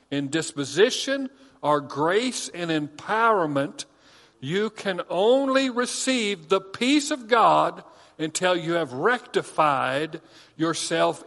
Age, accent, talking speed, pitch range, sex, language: 50-69, American, 100 wpm, 160-210 Hz, male, English